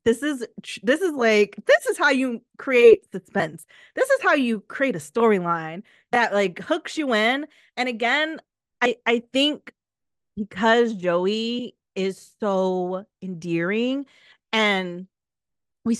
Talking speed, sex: 130 wpm, female